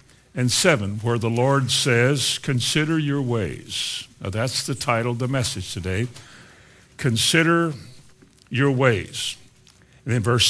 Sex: male